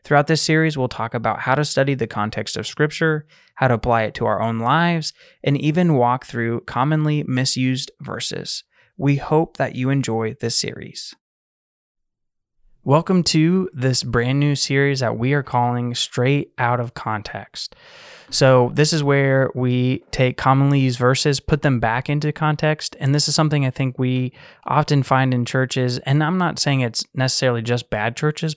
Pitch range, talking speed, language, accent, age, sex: 120-145 Hz, 175 wpm, English, American, 20-39, male